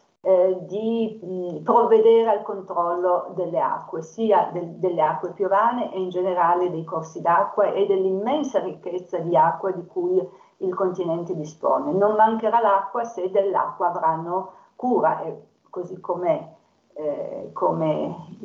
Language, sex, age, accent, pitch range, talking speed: Italian, female, 50-69, native, 165-210 Hz, 125 wpm